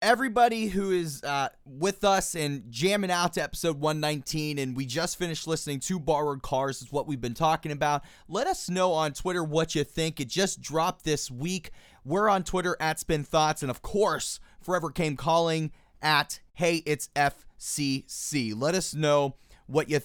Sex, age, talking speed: male, 30-49, 190 wpm